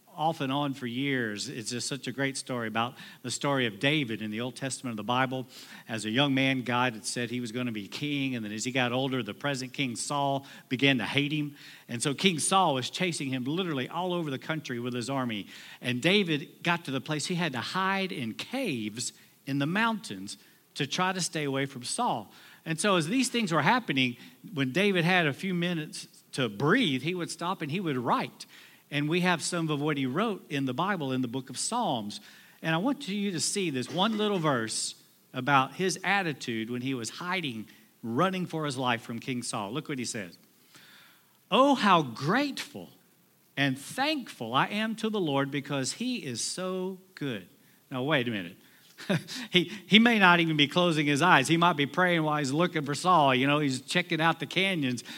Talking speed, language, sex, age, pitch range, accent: 215 wpm, English, male, 50-69, 125-180 Hz, American